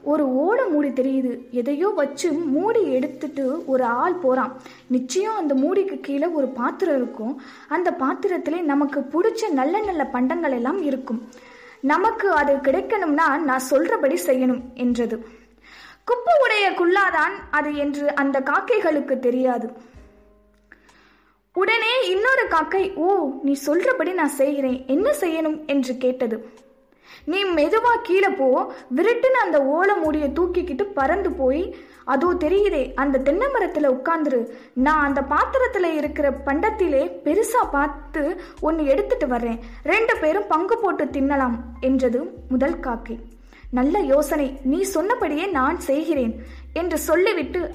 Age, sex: 20-39, female